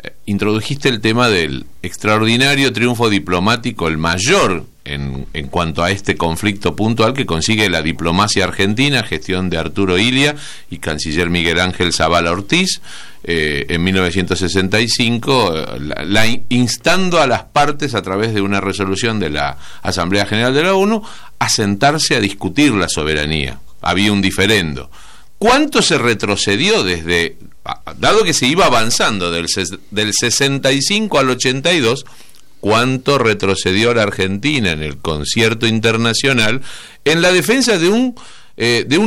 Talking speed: 135 wpm